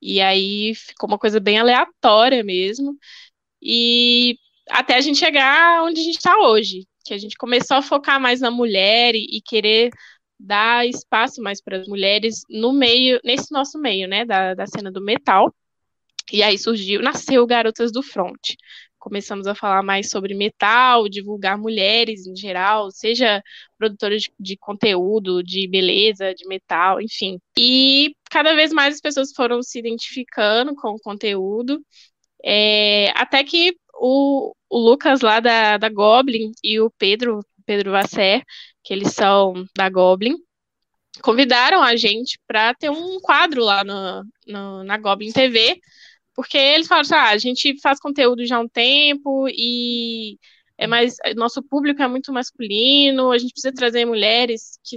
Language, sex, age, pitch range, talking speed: Portuguese, female, 10-29, 210-275 Hz, 160 wpm